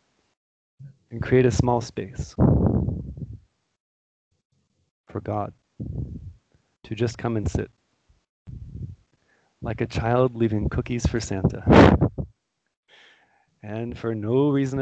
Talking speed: 95 wpm